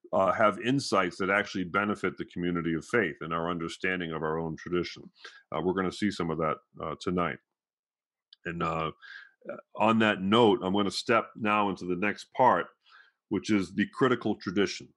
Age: 40-59